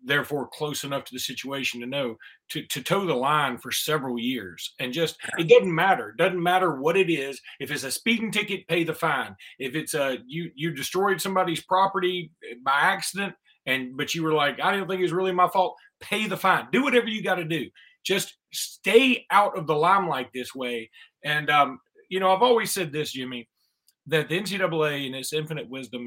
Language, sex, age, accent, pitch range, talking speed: English, male, 30-49, American, 135-185 Hz, 210 wpm